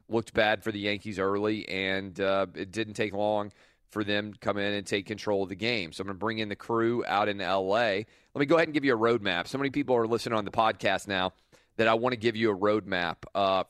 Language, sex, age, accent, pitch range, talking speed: English, male, 30-49, American, 95-115 Hz, 265 wpm